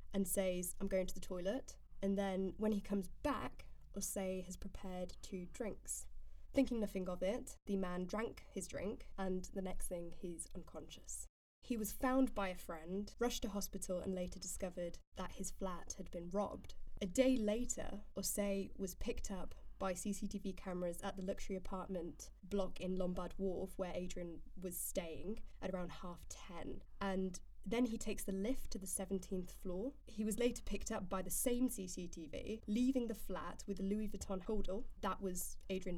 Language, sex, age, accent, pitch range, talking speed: English, female, 10-29, British, 185-205 Hz, 180 wpm